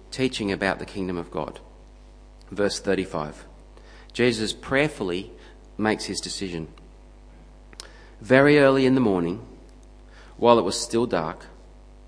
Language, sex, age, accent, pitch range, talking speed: English, male, 40-59, Australian, 95-125 Hz, 115 wpm